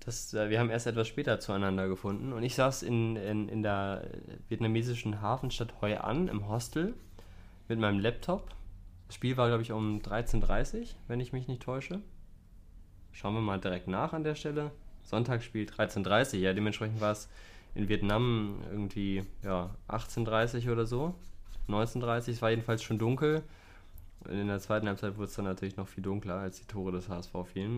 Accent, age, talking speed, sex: German, 20-39, 170 wpm, male